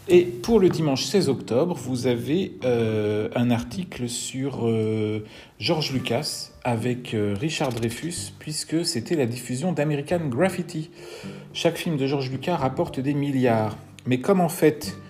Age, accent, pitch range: 40-59, French, 105-135 Hz